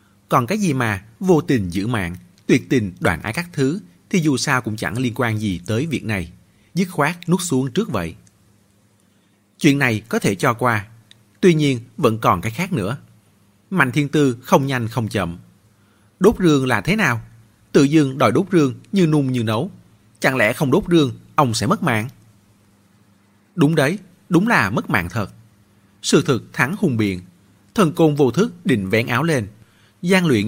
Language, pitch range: Vietnamese, 100-140 Hz